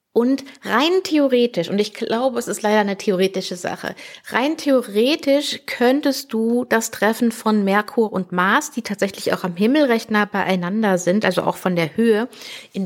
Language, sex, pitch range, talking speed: German, female, 190-240 Hz, 175 wpm